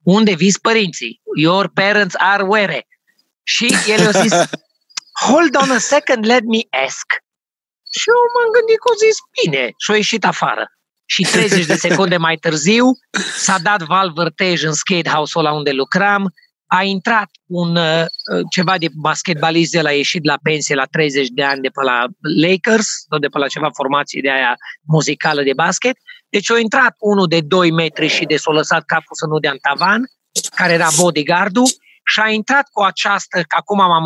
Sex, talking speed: male, 175 wpm